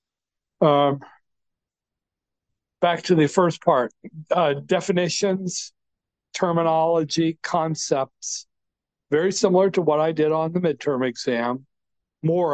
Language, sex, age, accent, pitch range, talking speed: English, male, 60-79, American, 130-160 Hz, 100 wpm